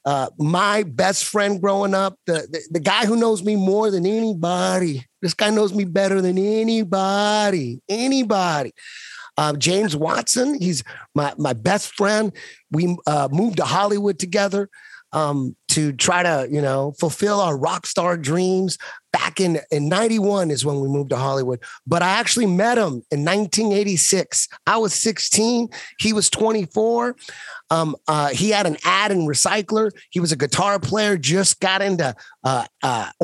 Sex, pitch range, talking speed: male, 155-205 Hz, 160 wpm